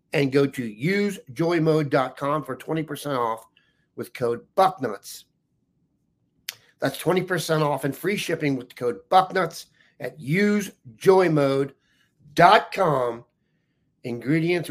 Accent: American